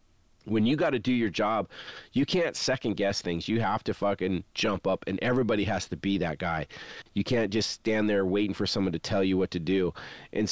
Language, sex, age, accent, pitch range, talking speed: English, male, 30-49, American, 95-110 Hz, 220 wpm